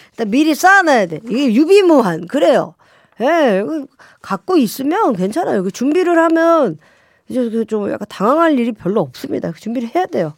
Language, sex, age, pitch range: Korean, female, 40-59, 185-280 Hz